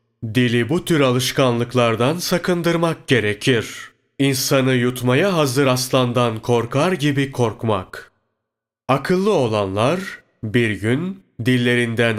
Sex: male